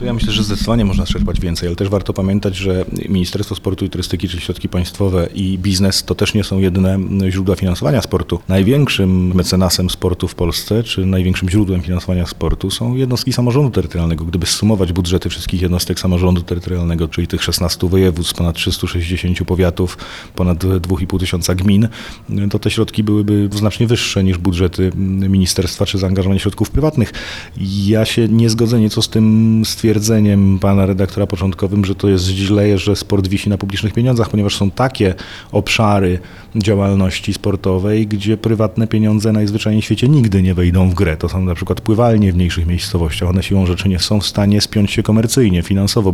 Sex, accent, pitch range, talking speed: male, native, 90-105 Hz, 170 wpm